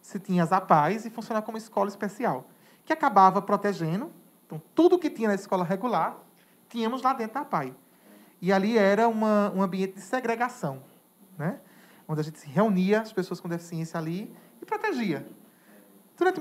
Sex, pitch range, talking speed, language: male, 175-220 Hz, 170 wpm, Portuguese